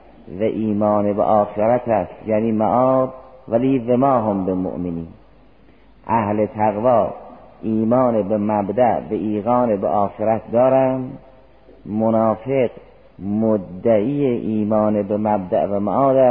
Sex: male